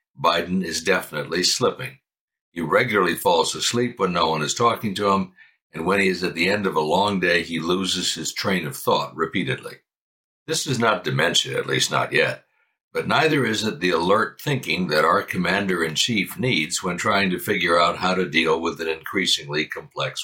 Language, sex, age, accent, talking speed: English, male, 60-79, American, 190 wpm